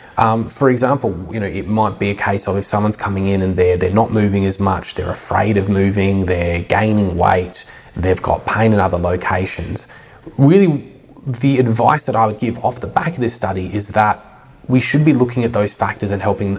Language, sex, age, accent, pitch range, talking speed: English, male, 20-39, Australian, 95-115 Hz, 215 wpm